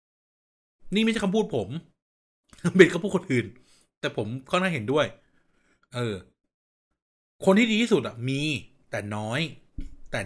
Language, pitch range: Thai, 130-210 Hz